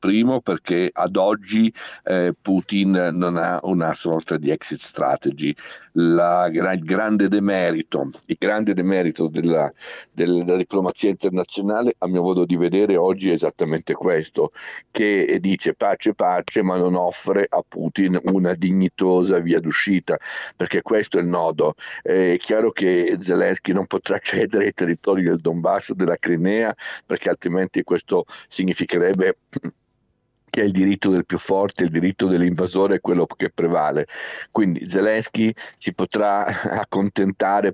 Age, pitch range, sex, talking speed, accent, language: 50-69, 90-105 Hz, male, 135 wpm, native, Italian